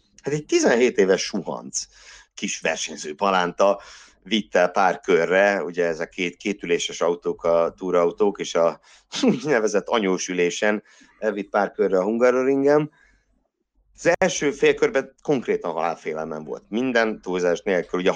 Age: 50-69